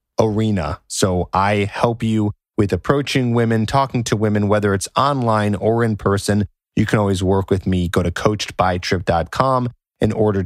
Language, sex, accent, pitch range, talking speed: English, male, American, 95-120 Hz, 160 wpm